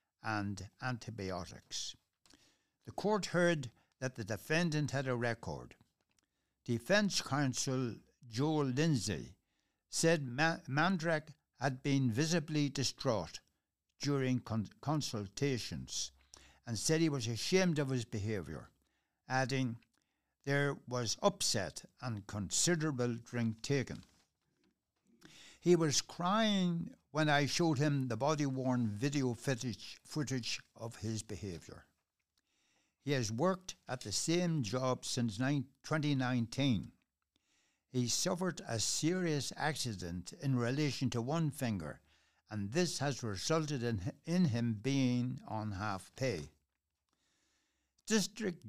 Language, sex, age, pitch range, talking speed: English, male, 60-79, 115-150 Hz, 105 wpm